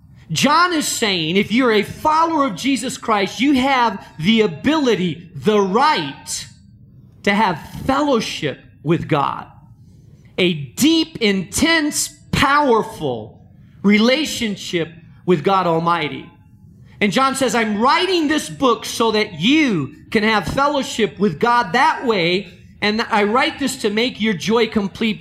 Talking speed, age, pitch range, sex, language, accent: 130 wpm, 40-59, 170-250 Hz, male, English, American